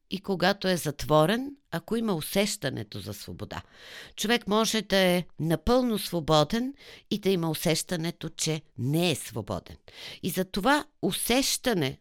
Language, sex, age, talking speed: Bulgarian, female, 50-69, 135 wpm